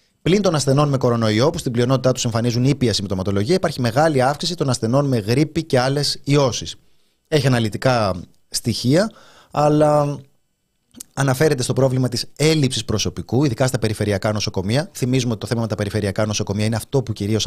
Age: 30-49